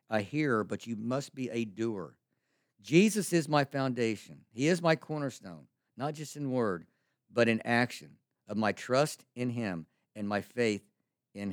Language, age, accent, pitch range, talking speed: English, 50-69, American, 110-140 Hz, 165 wpm